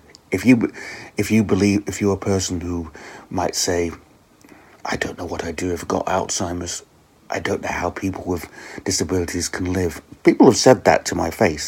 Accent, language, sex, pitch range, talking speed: British, English, male, 90-105 Hz, 195 wpm